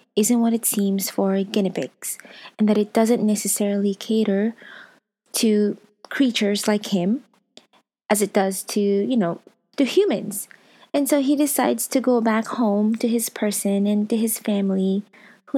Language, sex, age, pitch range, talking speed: English, female, 20-39, 200-230 Hz, 160 wpm